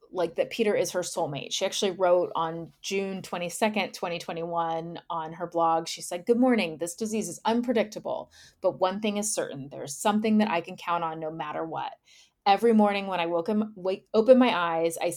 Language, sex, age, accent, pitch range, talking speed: English, female, 30-49, American, 170-210 Hz, 185 wpm